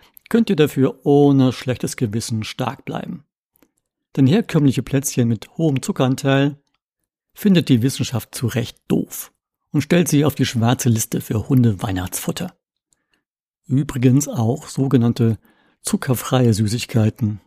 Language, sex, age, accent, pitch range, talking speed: German, male, 60-79, German, 115-145 Hz, 115 wpm